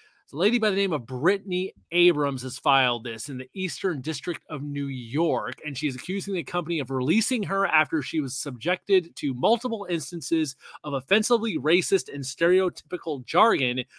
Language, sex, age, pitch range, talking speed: English, male, 30-49, 135-180 Hz, 165 wpm